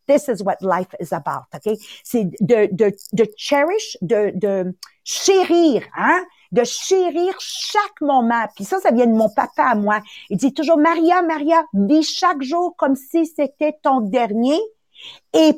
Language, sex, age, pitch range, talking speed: English, female, 50-69, 225-330 Hz, 165 wpm